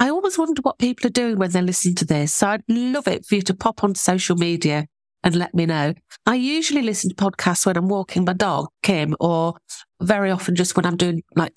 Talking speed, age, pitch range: 240 wpm, 40-59, 175-215 Hz